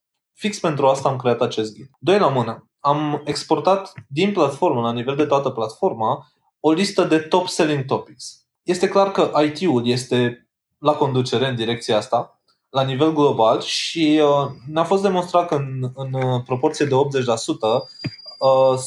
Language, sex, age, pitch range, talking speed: Romanian, male, 20-39, 125-150 Hz, 150 wpm